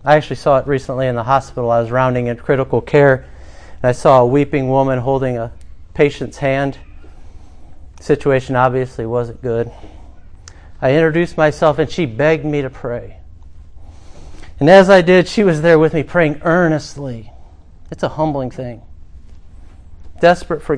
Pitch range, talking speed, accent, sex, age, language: 85-145 Hz, 160 wpm, American, male, 40-59, English